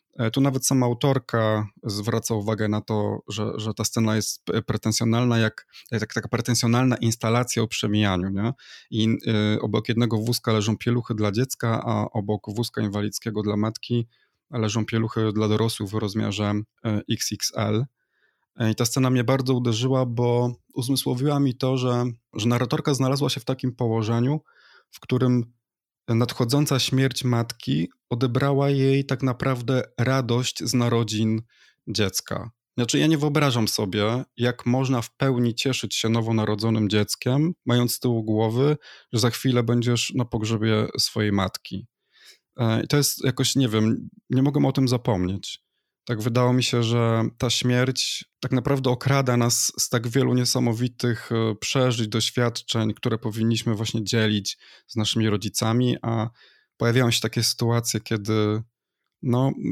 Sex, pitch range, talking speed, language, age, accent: male, 110-130 Hz, 140 wpm, Polish, 20-39, native